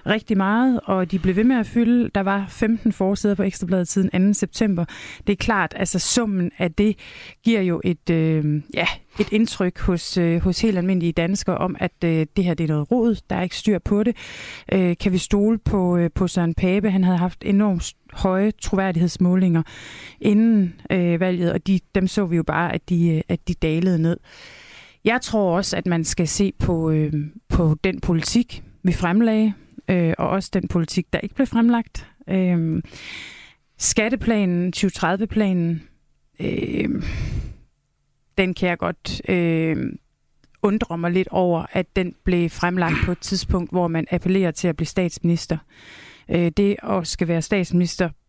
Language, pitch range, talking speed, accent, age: Danish, 175-205 Hz, 170 wpm, native, 30-49